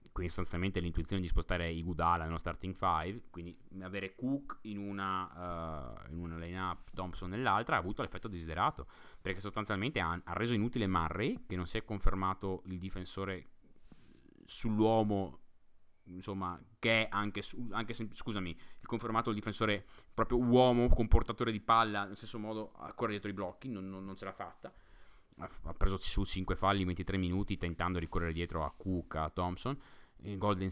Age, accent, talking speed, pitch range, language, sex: 20-39, native, 175 wpm, 85-105 Hz, Italian, male